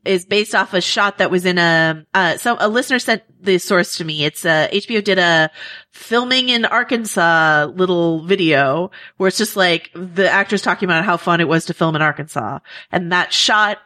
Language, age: English, 30-49